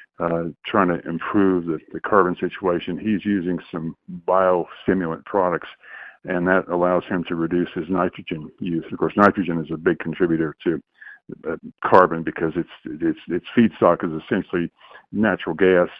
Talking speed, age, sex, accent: 155 wpm, 50-69, male, American